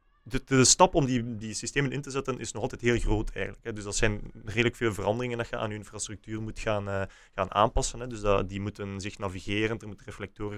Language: Dutch